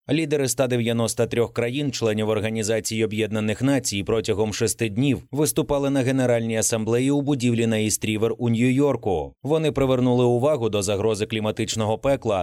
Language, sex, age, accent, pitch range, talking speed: Ukrainian, male, 30-49, native, 110-135 Hz, 125 wpm